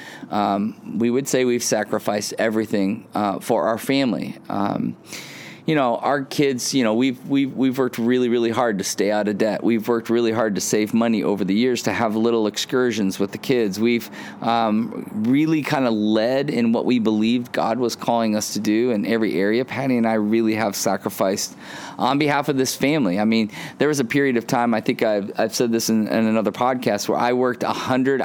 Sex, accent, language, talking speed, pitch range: male, American, English, 210 wpm, 110-130 Hz